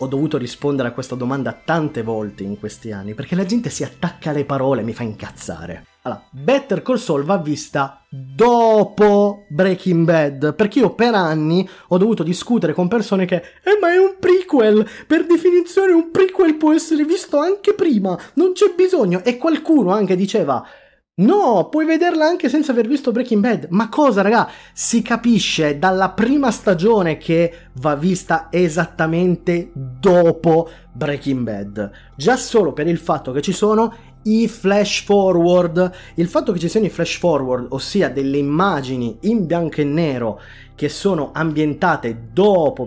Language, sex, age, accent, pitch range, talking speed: Italian, male, 30-49, native, 150-230 Hz, 160 wpm